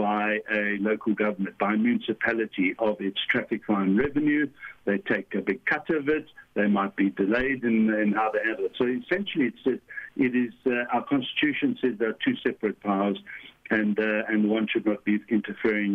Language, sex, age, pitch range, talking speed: English, male, 60-79, 105-155 Hz, 190 wpm